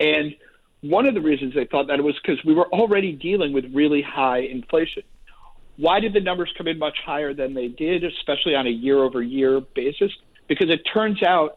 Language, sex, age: English, male, 50-69